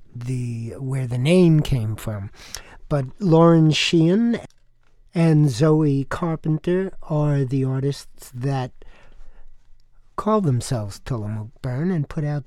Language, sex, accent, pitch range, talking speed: English, male, American, 120-165 Hz, 105 wpm